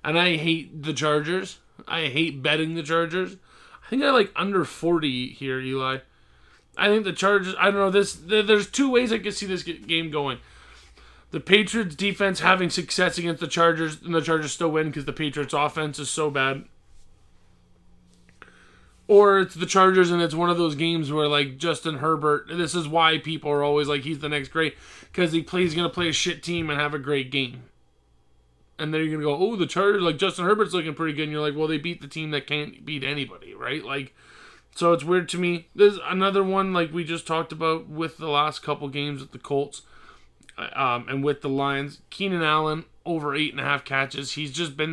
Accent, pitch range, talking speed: American, 140-175 Hz, 215 wpm